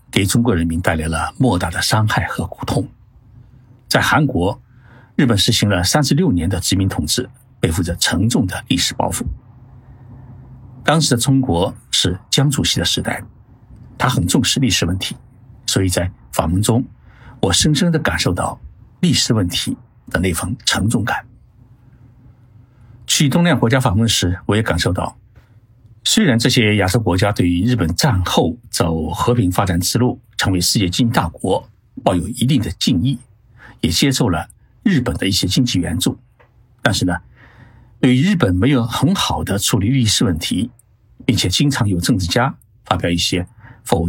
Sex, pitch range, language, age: male, 100-125 Hz, Chinese, 60-79